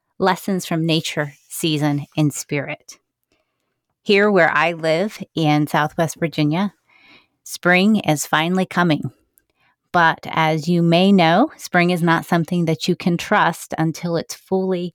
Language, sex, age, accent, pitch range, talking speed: English, female, 30-49, American, 160-190 Hz, 135 wpm